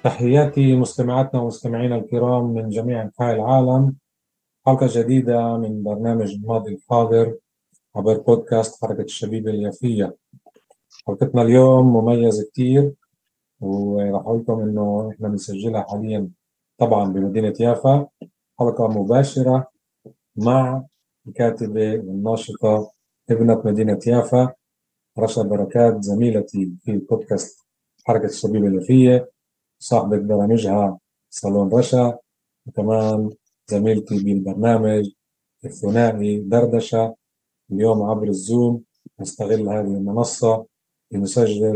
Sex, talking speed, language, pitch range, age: male, 90 wpm, Arabic, 105-125 Hz, 30-49